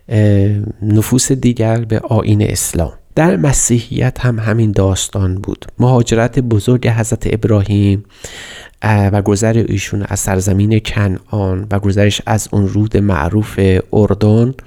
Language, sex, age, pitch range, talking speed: Persian, male, 30-49, 100-120 Hz, 110 wpm